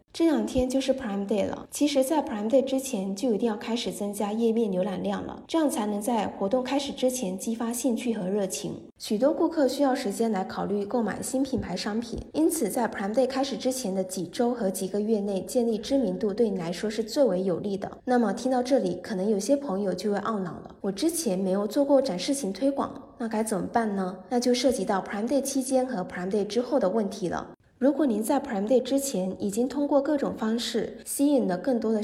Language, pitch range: Chinese, 200-265 Hz